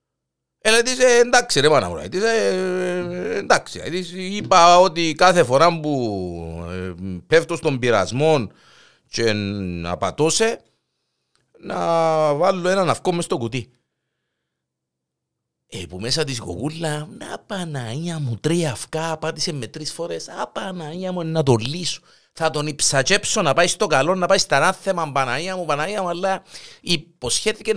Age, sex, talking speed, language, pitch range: 50-69, male, 140 wpm, Greek, 115-180 Hz